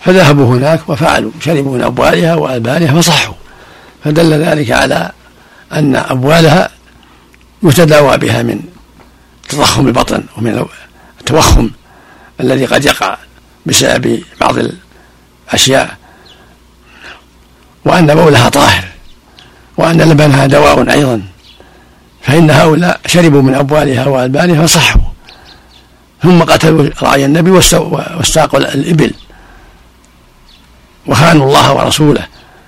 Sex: male